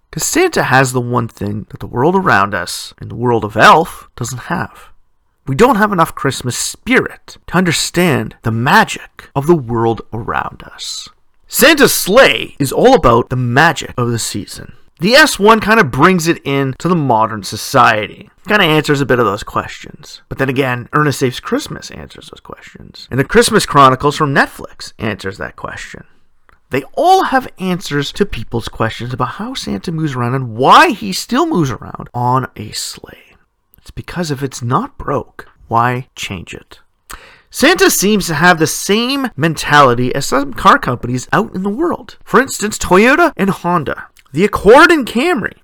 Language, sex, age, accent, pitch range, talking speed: English, male, 40-59, American, 125-200 Hz, 175 wpm